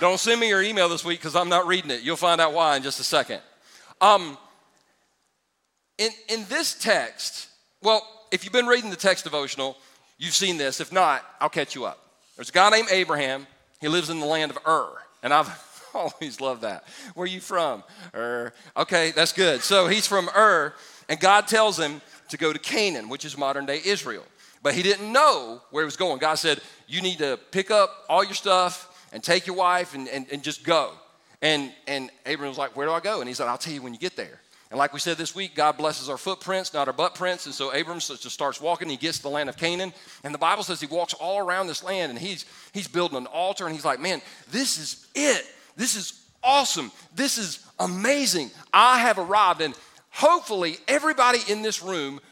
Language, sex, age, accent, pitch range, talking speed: English, male, 40-59, American, 150-200 Hz, 225 wpm